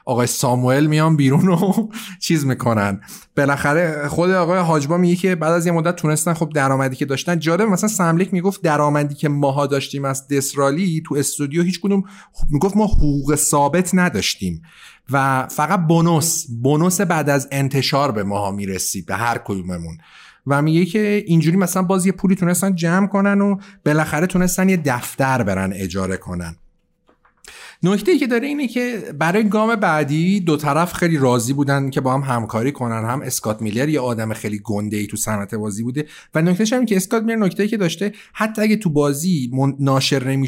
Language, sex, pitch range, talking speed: Persian, male, 135-185 Hz, 175 wpm